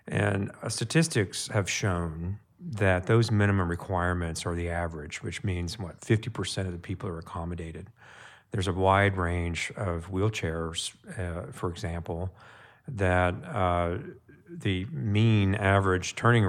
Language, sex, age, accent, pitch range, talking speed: English, male, 40-59, American, 90-110 Hz, 130 wpm